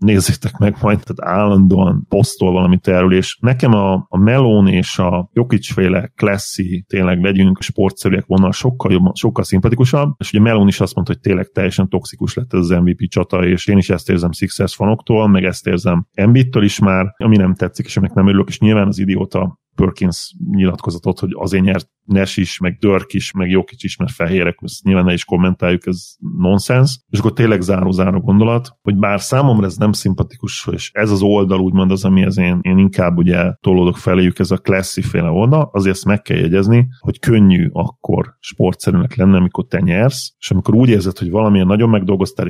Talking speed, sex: 190 wpm, male